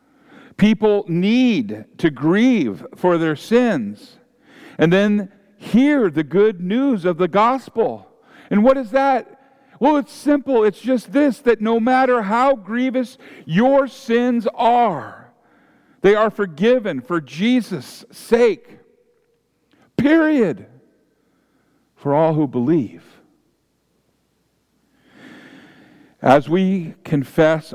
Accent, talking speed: American, 105 wpm